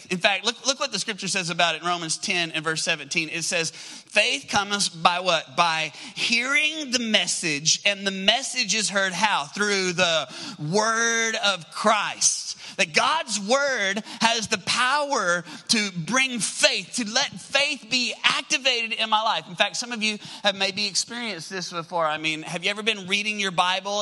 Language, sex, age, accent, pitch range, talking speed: English, male, 30-49, American, 180-240 Hz, 180 wpm